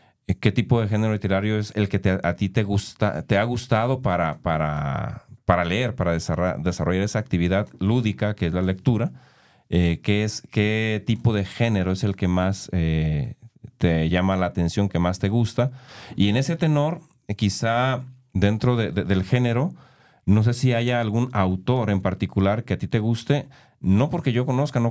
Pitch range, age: 95-120 Hz, 40-59